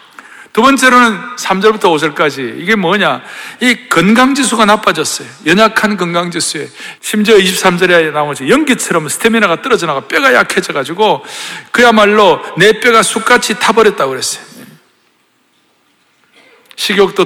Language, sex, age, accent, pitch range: Korean, male, 60-79, native, 180-240 Hz